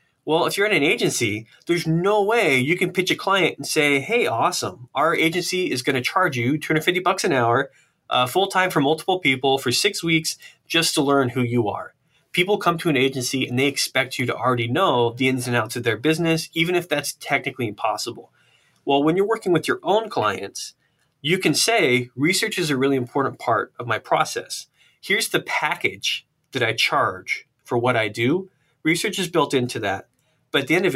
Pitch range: 120-160 Hz